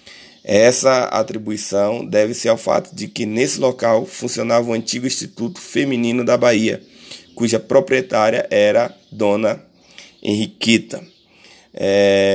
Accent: Brazilian